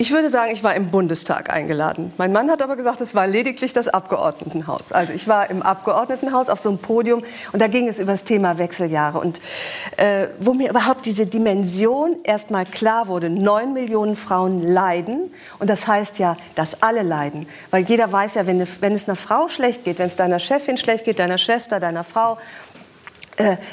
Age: 50-69